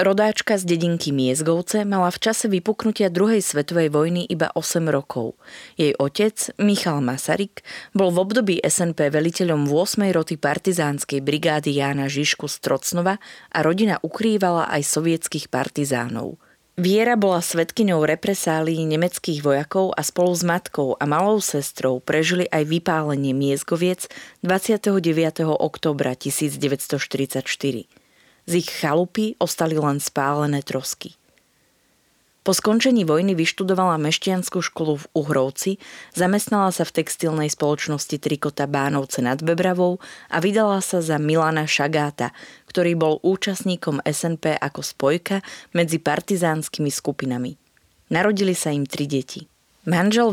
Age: 30-49